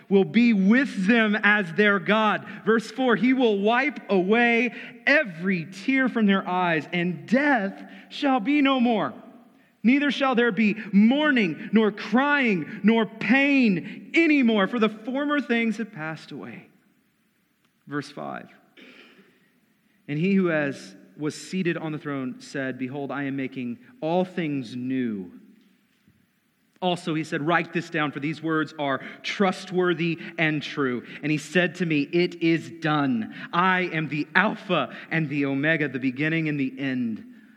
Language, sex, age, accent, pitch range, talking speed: English, male, 40-59, American, 140-225 Hz, 145 wpm